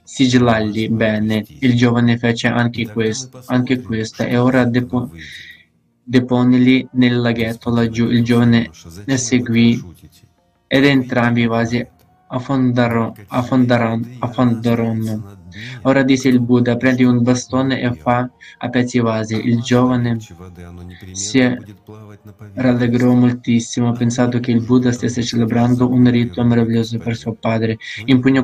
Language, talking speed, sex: Italian, 120 wpm, male